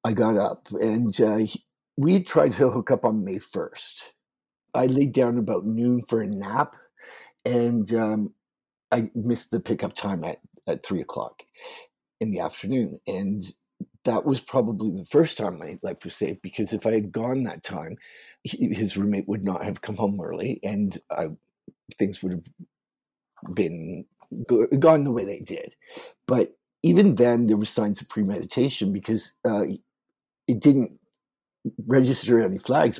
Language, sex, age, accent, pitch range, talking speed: English, male, 50-69, American, 105-135 Hz, 160 wpm